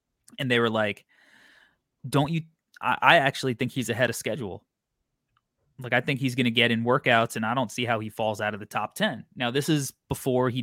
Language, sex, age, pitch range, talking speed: English, male, 20-39, 120-145 Hz, 225 wpm